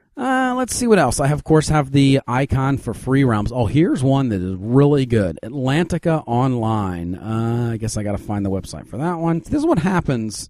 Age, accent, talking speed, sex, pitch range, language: 40-59, American, 215 wpm, male, 120-150 Hz, English